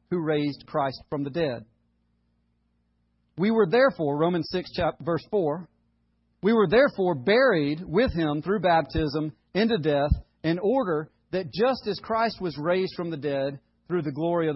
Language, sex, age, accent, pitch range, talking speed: English, male, 40-59, American, 155-210 Hz, 160 wpm